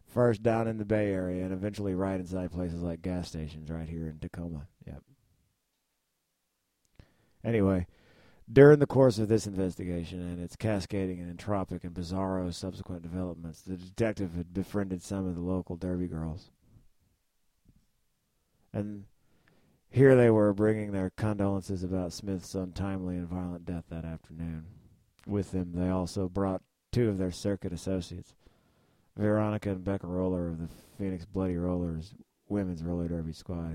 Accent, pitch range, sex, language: American, 85-100 Hz, male, English